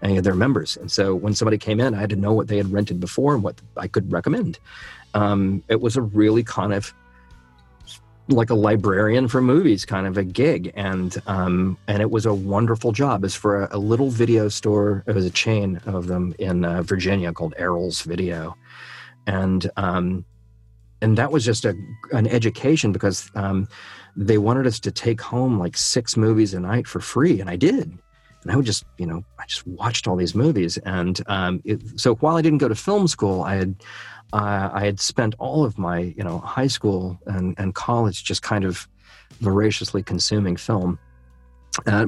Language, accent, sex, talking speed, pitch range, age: English, American, male, 200 wpm, 95-115 Hz, 40-59